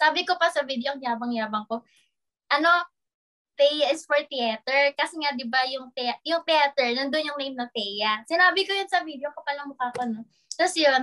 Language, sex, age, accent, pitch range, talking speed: English, female, 20-39, Filipino, 250-330 Hz, 195 wpm